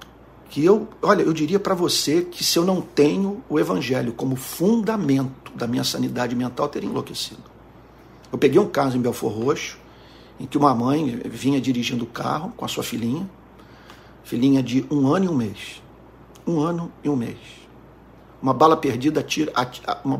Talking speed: 165 wpm